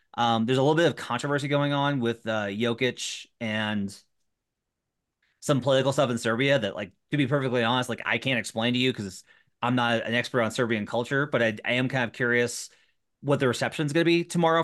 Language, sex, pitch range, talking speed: English, male, 115-145 Hz, 215 wpm